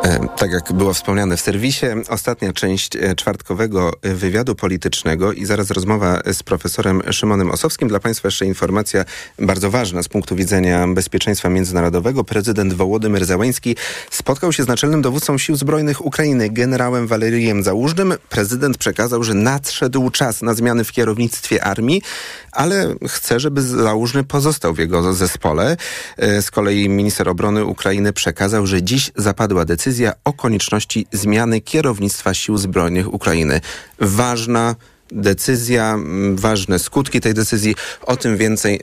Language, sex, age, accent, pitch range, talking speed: Polish, male, 30-49, native, 95-120 Hz, 135 wpm